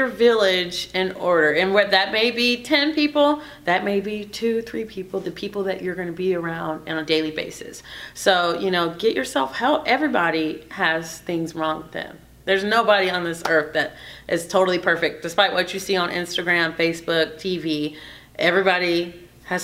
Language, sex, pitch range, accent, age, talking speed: English, female, 155-195 Hz, American, 30-49, 175 wpm